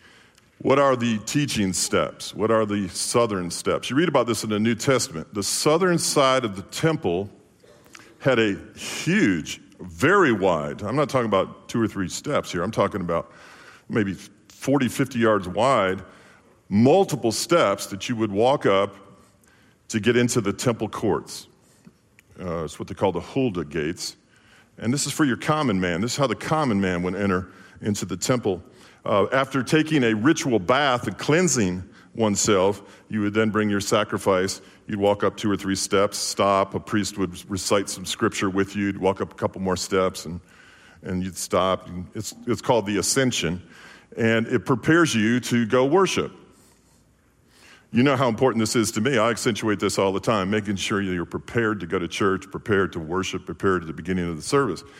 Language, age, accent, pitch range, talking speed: English, 50-69, American, 95-125 Hz, 190 wpm